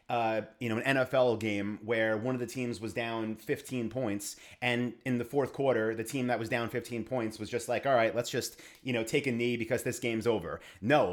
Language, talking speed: English, 235 wpm